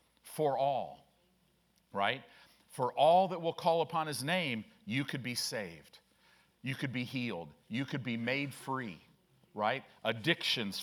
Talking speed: 145 wpm